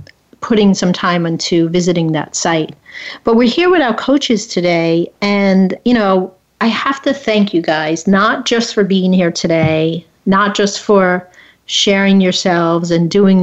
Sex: female